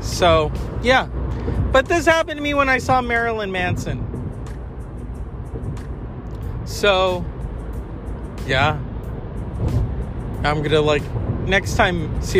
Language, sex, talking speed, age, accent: English, male, 95 wpm, 40-59, American